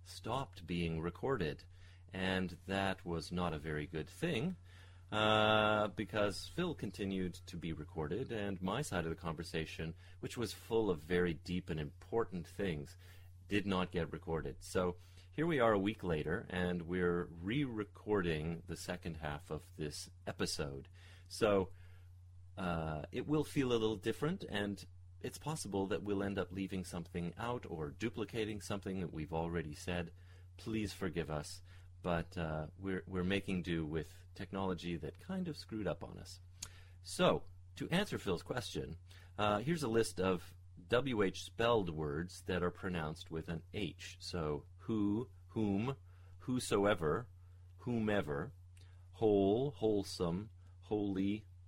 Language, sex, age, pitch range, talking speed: English, male, 30-49, 85-100 Hz, 145 wpm